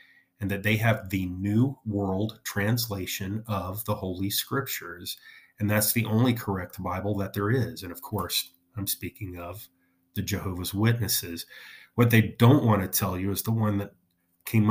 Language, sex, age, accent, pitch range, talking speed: English, male, 30-49, American, 95-110 Hz, 170 wpm